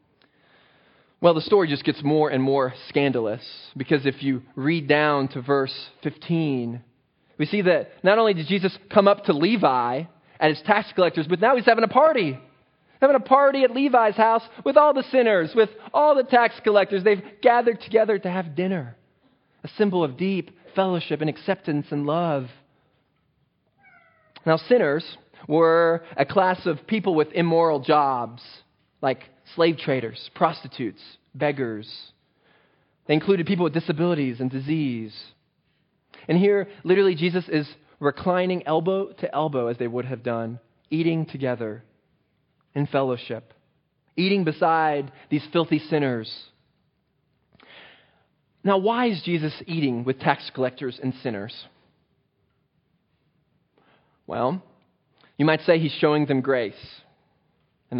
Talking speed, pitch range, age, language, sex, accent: 135 wpm, 135-190 Hz, 20-39, English, male, American